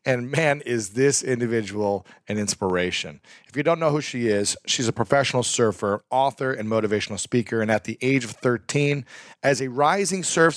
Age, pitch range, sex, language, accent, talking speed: 40-59, 110-140 Hz, male, English, American, 180 wpm